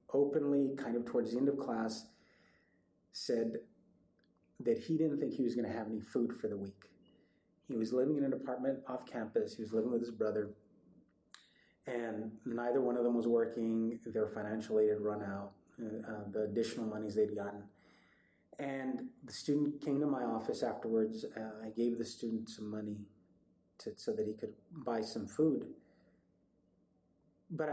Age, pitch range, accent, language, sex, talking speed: 30-49, 110-125 Hz, American, English, male, 170 wpm